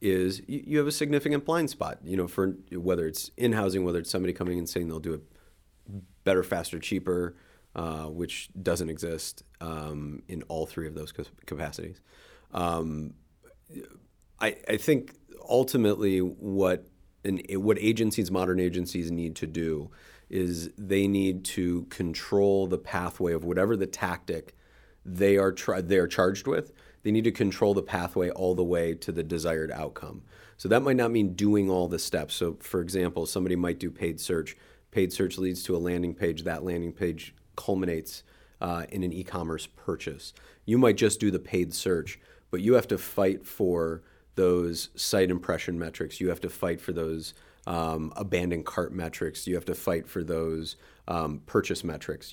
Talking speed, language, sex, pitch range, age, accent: 170 wpm, English, male, 80-95 Hz, 30-49, American